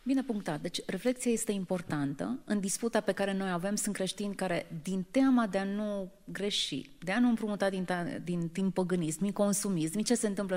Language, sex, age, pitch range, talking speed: Romanian, female, 30-49, 170-205 Hz, 195 wpm